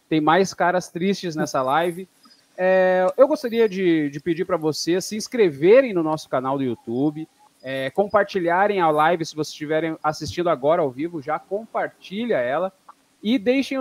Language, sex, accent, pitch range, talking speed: Portuguese, male, Brazilian, 155-225 Hz, 160 wpm